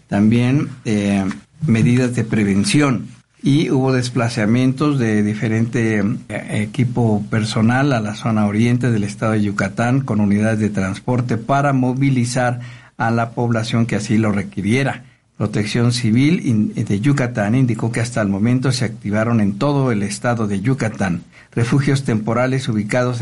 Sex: male